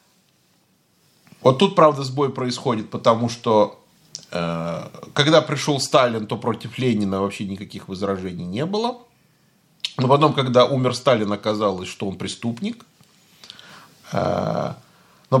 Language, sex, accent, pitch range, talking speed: Russian, male, native, 115-155 Hz, 110 wpm